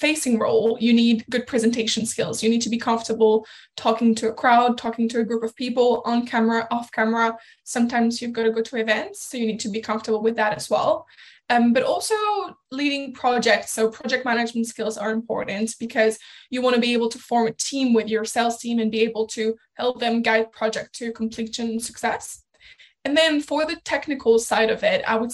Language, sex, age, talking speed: English, female, 10-29, 215 wpm